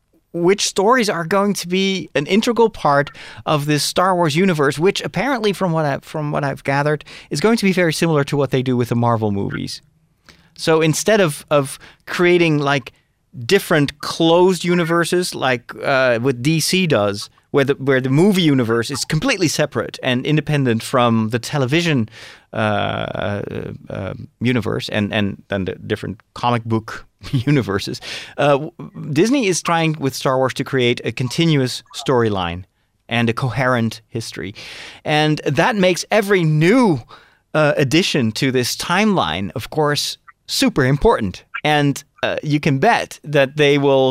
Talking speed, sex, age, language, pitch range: 155 wpm, male, 30-49, English, 130-175 Hz